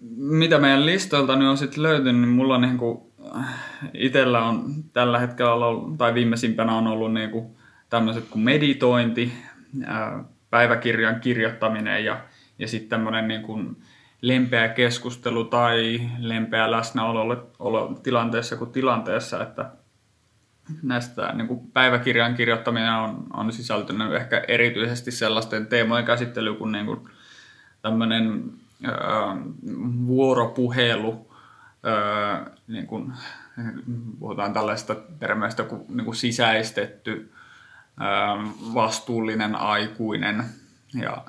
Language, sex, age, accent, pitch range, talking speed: Finnish, male, 20-39, native, 110-125 Hz, 95 wpm